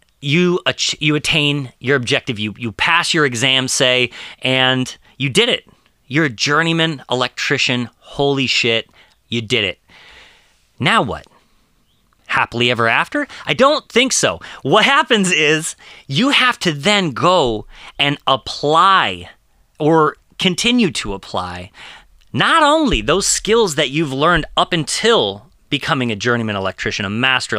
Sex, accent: male, American